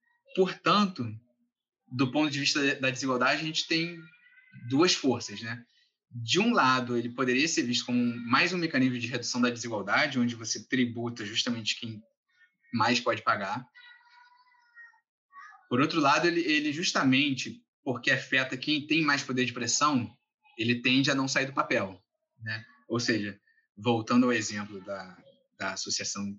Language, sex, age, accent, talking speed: Portuguese, male, 20-39, Brazilian, 150 wpm